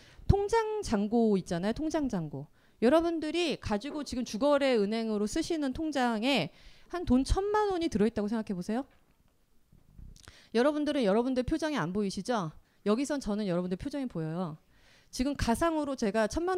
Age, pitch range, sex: 30-49, 195-295 Hz, female